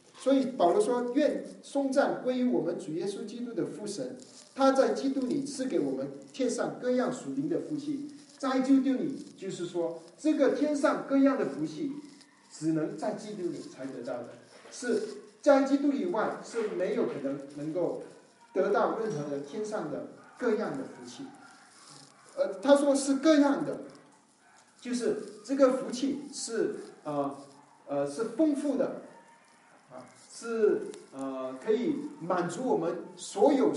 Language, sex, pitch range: Japanese, male, 190-285 Hz